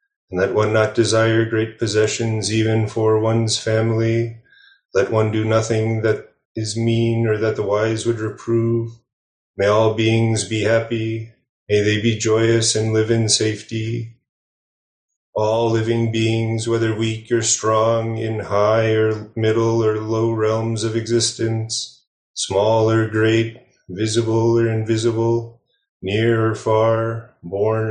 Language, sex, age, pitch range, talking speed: English, male, 30-49, 110-115 Hz, 135 wpm